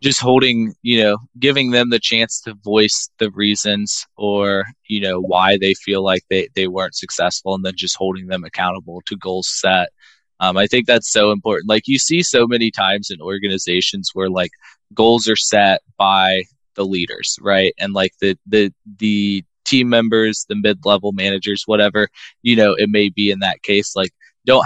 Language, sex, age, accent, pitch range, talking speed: English, male, 20-39, American, 95-120 Hz, 185 wpm